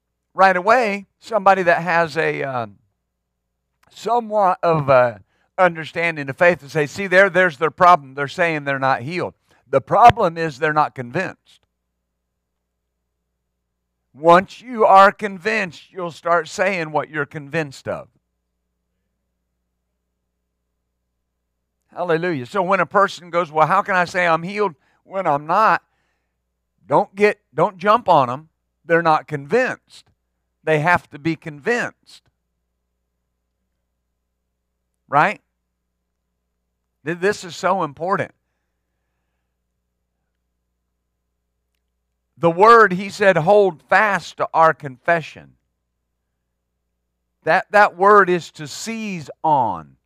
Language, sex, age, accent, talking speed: English, male, 50-69, American, 110 wpm